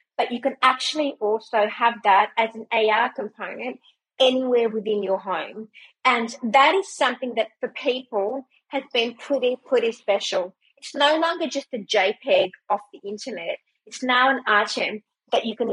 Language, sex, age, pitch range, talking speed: English, female, 30-49, 200-255 Hz, 165 wpm